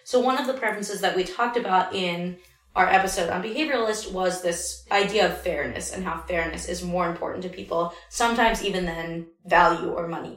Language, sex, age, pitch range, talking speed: English, female, 20-39, 185-245 Hz, 190 wpm